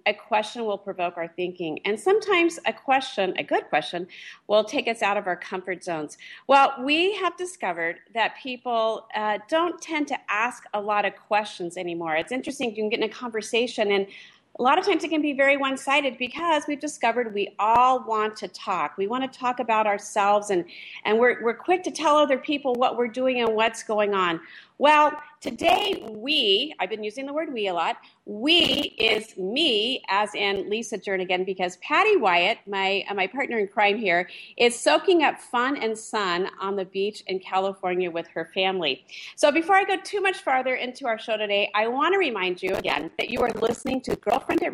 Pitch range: 195-280 Hz